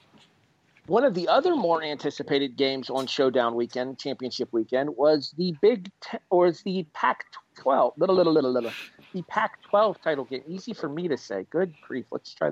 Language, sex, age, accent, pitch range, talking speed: English, male, 40-59, American, 140-210 Hz, 175 wpm